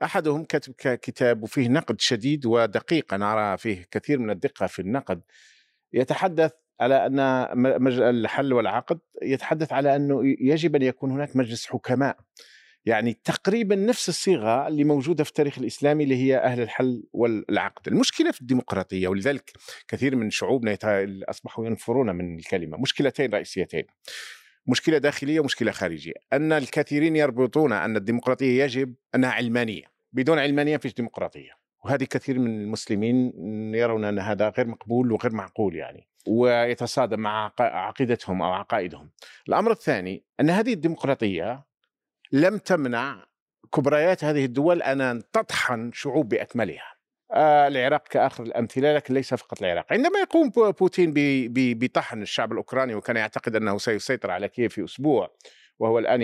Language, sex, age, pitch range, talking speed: Arabic, male, 50-69, 115-150 Hz, 140 wpm